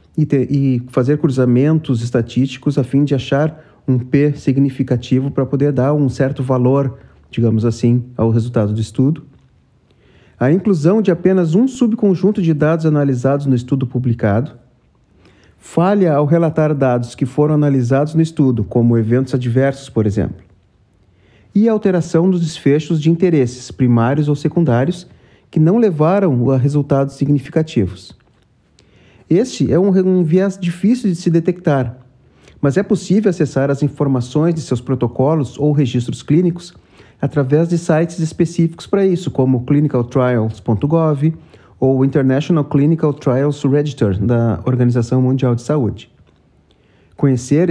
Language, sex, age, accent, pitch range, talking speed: Portuguese, male, 40-59, Brazilian, 125-165 Hz, 135 wpm